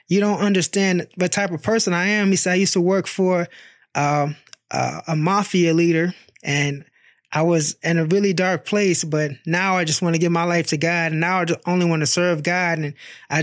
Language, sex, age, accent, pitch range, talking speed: English, male, 20-39, American, 165-195 Hz, 230 wpm